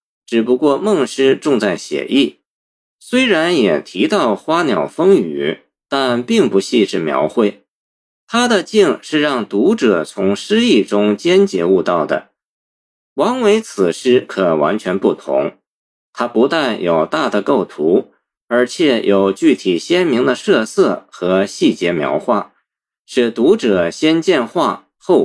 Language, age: Chinese, 50-69